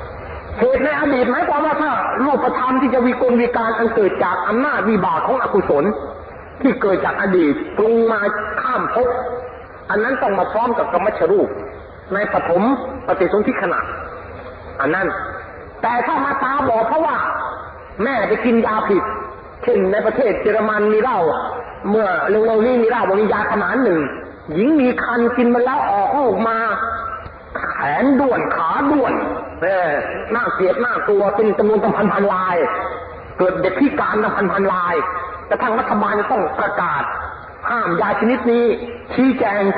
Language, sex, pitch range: Thai, male, 210-270 Hz